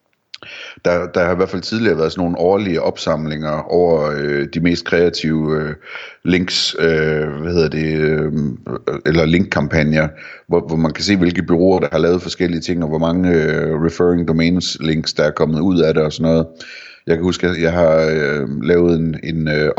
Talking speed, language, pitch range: 195 wpm, Danish, 80-85 Hz